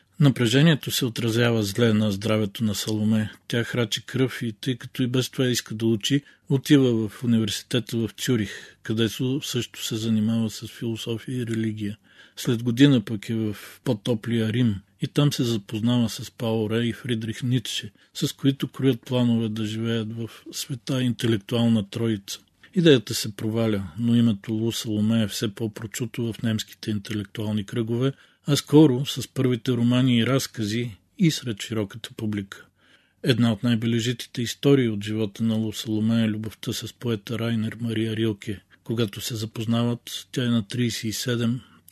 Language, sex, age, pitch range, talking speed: Bulgarian, male, 40-59, 110-125 Hz, 150 wpm